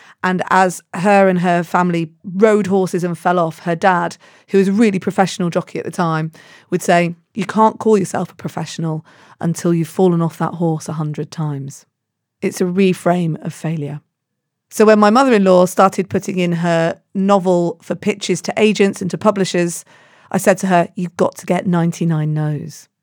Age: 40-59